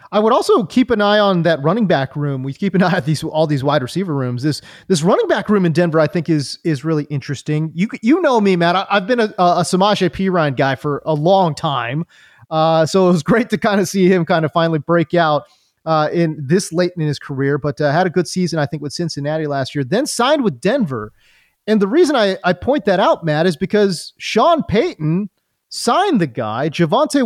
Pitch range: 155-210 Hz